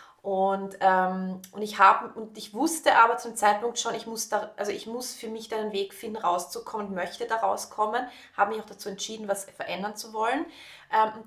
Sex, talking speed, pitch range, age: female, 210 wpm, 205-275 Hz, 20-39